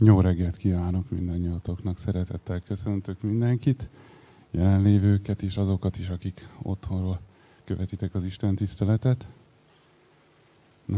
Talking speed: 100 wpm